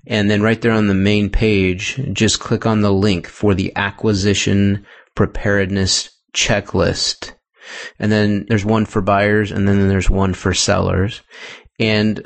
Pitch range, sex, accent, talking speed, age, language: 100-110 Hz, male, American, 150 wpm, 30-49, English